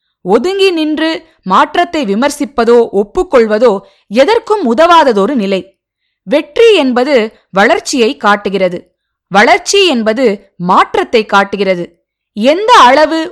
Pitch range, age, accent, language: 205-330 Hz, 20-39, native, Tamil